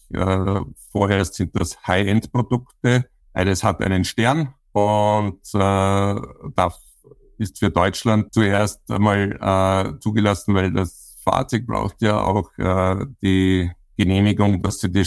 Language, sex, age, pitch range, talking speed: German, male, 60-79, 90-105 Hz, 110 wpm